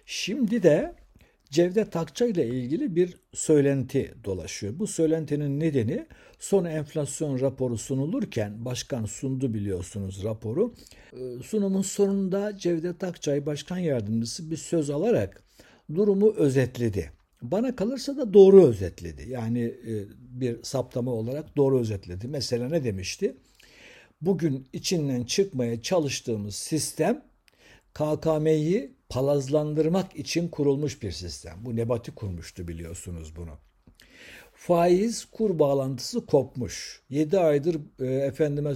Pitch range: 115-170 Hz